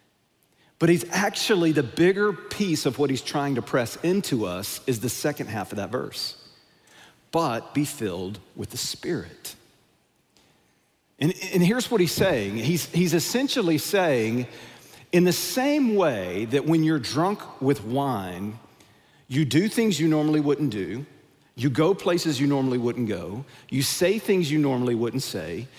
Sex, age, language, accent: male, 50-69, English, American